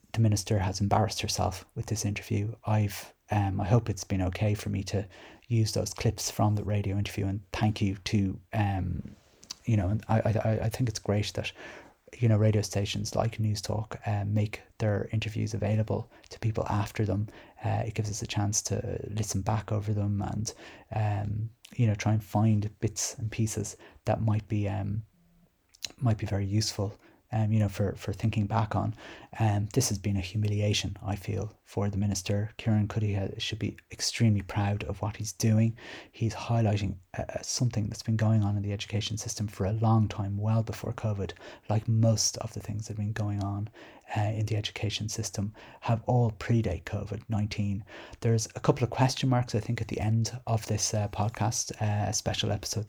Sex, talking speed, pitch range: male, 195 wpm, 100-110 Hz